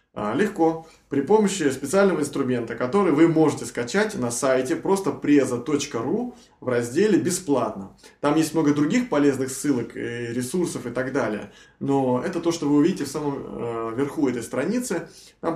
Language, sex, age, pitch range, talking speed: Russian, male, 20-39, 125-165 Hz, 145 wpm